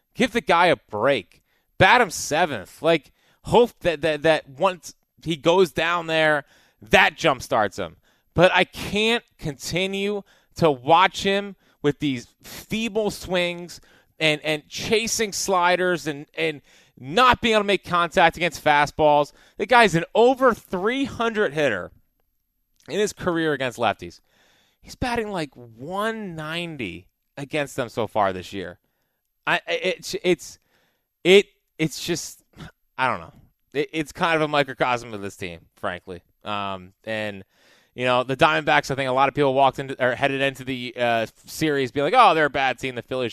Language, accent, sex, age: English, American, male, 30-49